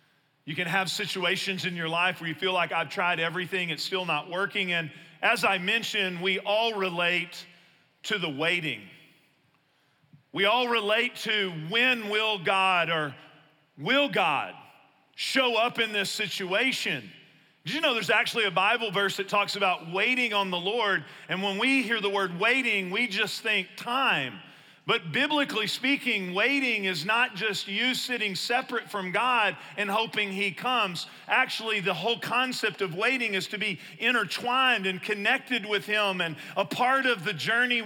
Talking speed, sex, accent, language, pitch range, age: 165 wpm, male, American, English, 175-215 Hz, 40-59